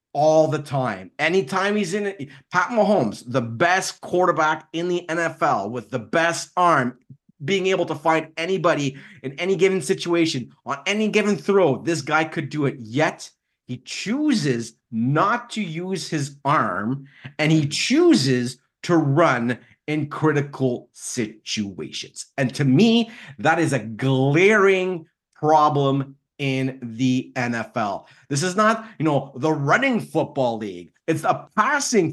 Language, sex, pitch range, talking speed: English, male, 135-190 Hz, 140 wpm